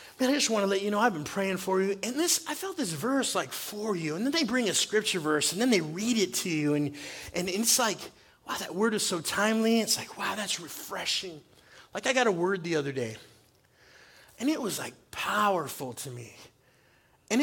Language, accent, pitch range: English, American, 150-240 Hz